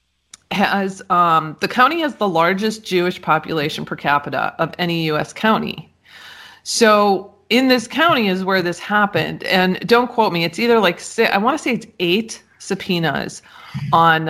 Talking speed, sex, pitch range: 165 wpm, female, 170-230 Hz